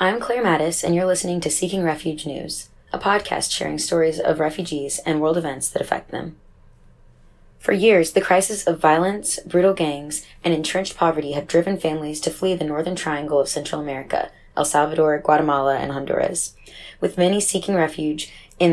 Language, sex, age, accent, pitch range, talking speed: English, female, 20-39, American, 150-180 Hz, 175 wpm